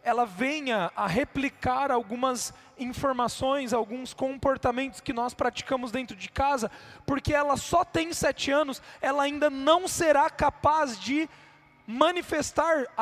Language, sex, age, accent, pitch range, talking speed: Portuguese, male, 20-39, Brazilian, 245-295 Hz, 125 wpm